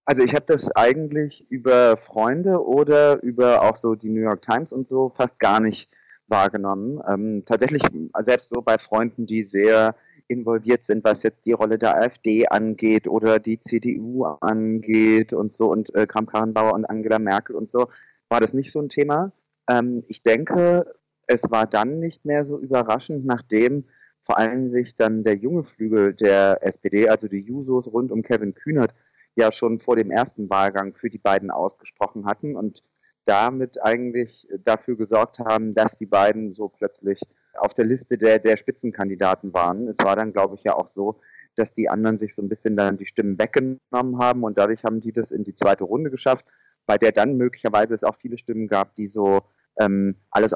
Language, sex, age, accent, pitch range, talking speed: German, male, 30-49, German, 105-125 Hz, 185 wpm